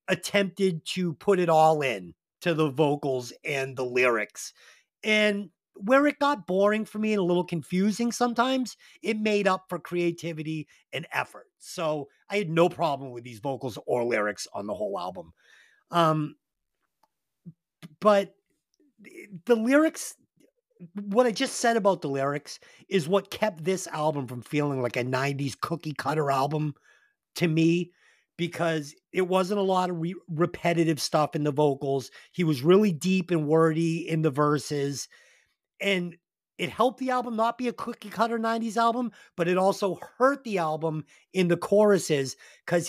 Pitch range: 150-205 Hz